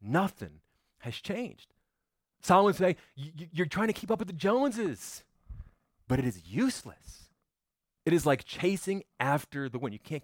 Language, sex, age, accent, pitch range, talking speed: English, male, 30-49, American, 125-195 Hz, 160 wpm